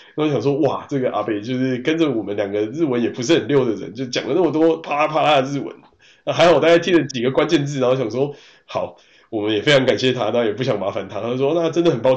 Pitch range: 115-165 Hz